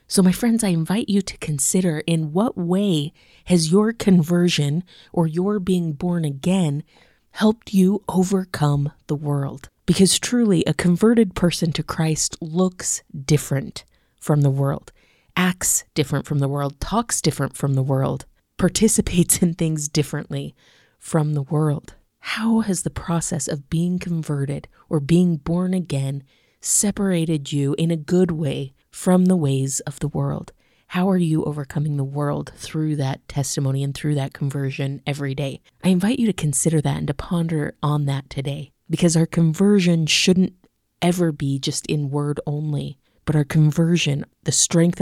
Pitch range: 145-180 Hz